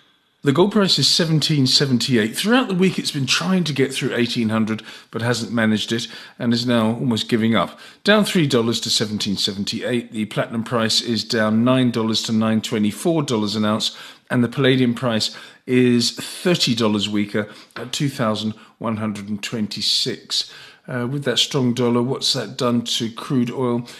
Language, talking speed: English, 145 wpm